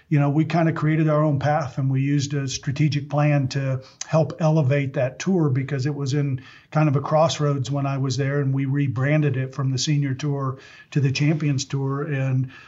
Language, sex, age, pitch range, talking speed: English, male, 50-69, 135-150 Hz, 215 wpm